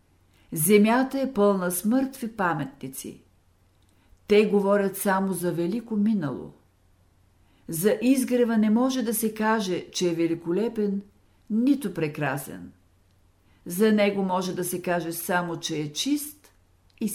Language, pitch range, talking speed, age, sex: Bulgarian, 145-215 Hz, 125 wpm, 50-69, female